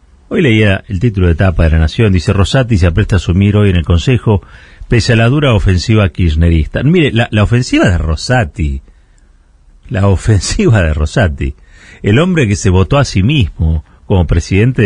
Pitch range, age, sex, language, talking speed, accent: 85-125 Hz, 40-59, male, Spanish, 180 wpm, Argentinian